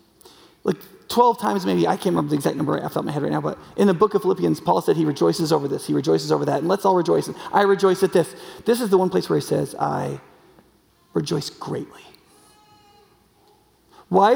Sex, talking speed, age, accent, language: male, 220 wpm, 30-49, American, English